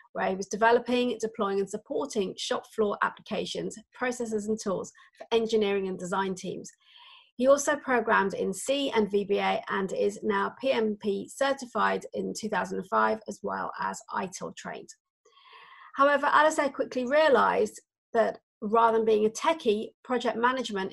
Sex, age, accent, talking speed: female, 40-59, British, 140 wpm